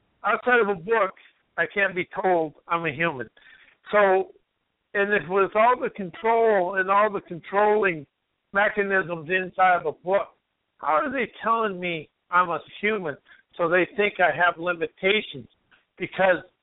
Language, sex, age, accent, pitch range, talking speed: English, male, 60-79, American, 175-210 Hz, 150 wpm